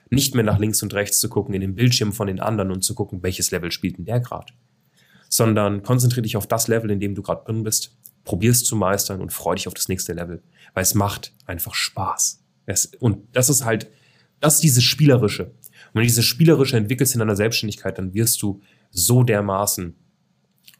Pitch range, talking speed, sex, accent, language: 100-120 Hz, 215 wpm, male, German, German